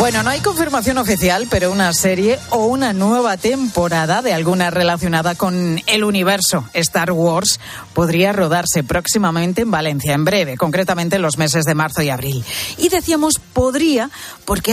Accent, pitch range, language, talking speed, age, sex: Spanish, 165-215 Hz, Spanish, 160 wpm, 40-59, female